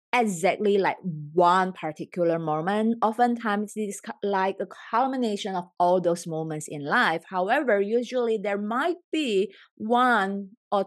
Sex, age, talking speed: female, 20-39, 125 wpm